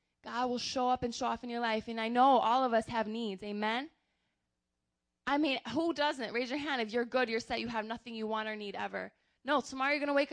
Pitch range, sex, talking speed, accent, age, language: 225-255 Hz, female, 260 wpm, American, 20-39, English